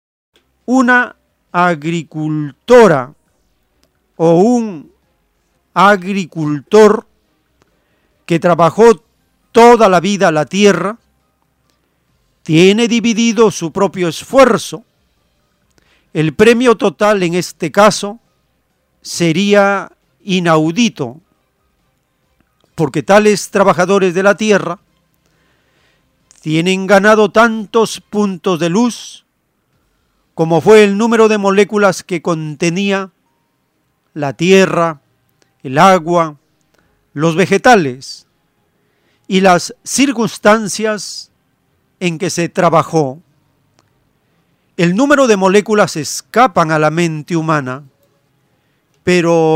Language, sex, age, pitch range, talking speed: Spanish, male, 40-59, 155-210 Hz, 80 wpm